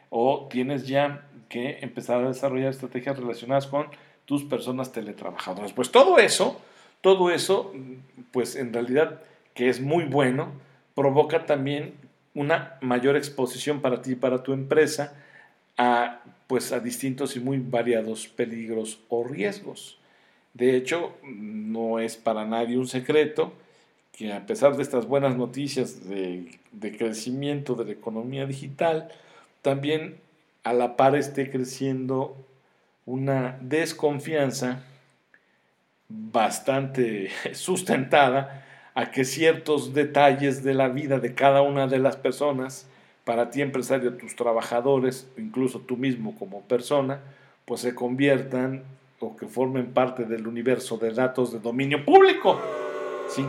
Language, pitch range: Spanish, 125-140 Hz